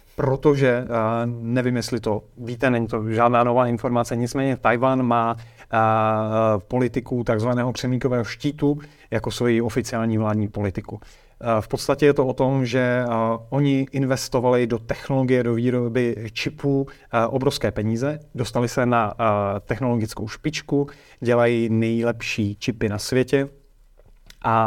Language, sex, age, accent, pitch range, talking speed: Czech, male, 30-49, native, 110-130 Hz, 130 wpm